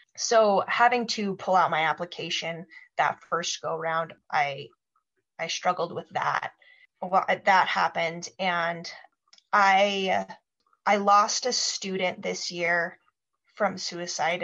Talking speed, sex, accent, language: 115 wpm, female, American, English